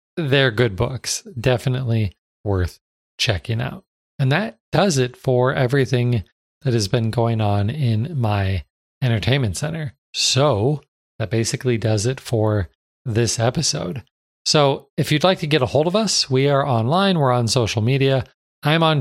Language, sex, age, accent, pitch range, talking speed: English, male, 40-59, American, 110-145 Hz, 155 wpm